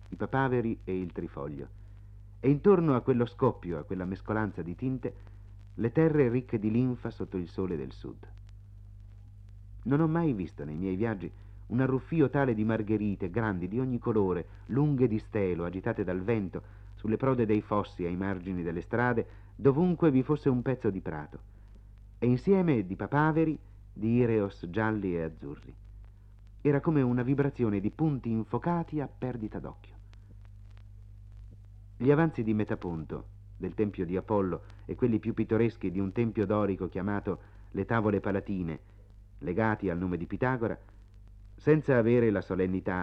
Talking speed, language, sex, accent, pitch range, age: 155 wpm, Italian, male, native, 100-120 Hz, 50-69